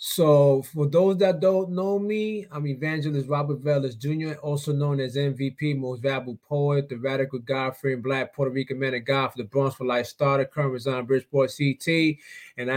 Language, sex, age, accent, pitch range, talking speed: English, male, 20-39, American, 130-150 Hz, 190 wpm